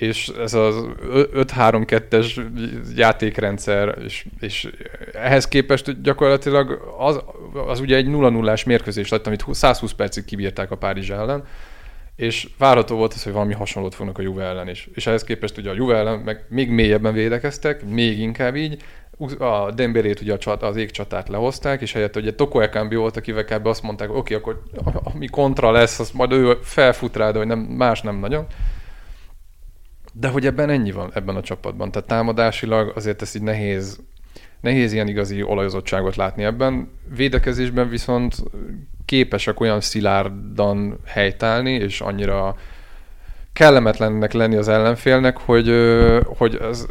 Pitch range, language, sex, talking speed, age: 100-120 Hz, Hungarian, male, 145 wpm, 30-49